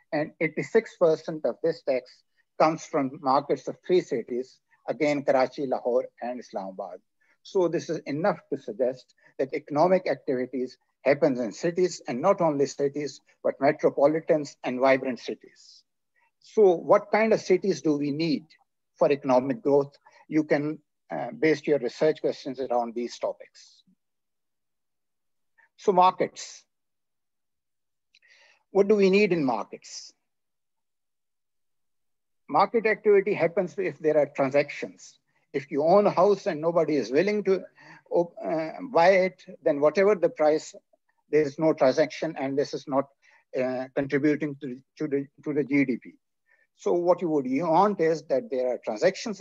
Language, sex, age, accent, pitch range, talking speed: English, male, 60-79, Indian, 145-200 Hz, 135 wpm